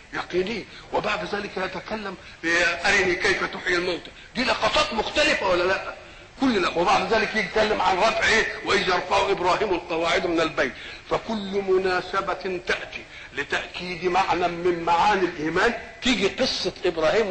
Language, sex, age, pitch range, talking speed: Arabic, male, 50-69, 180-225 Hz, 125 wpm